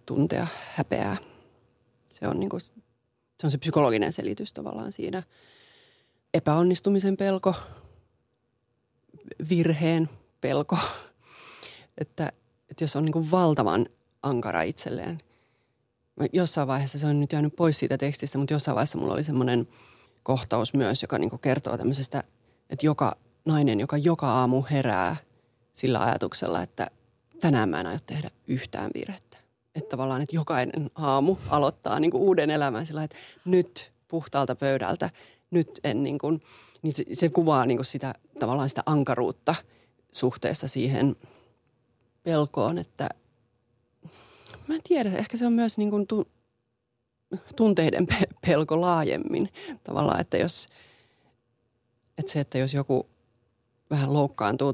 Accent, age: native, 30-49